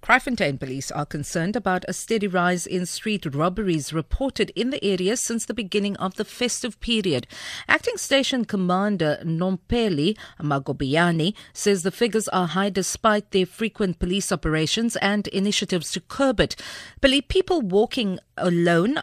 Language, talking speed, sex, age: English, 145 wpm, female, 50-69